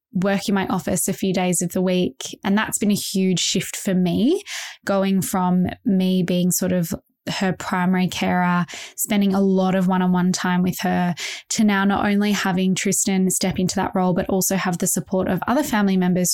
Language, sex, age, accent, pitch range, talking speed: English, female, 10-29, Australian, 180-210 Hz, 200 wpm